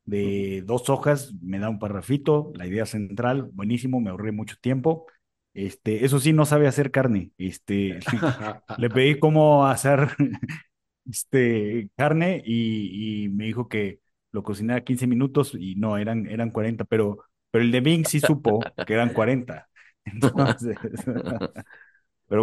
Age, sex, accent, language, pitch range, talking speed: 30-49, male, Mexican, Spanish, 105-130 Hz, 145 wpm